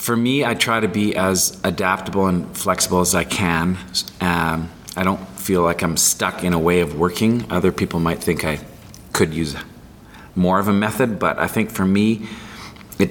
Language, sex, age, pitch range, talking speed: English, male, 40-59, 85-95 Hz, 190 wpm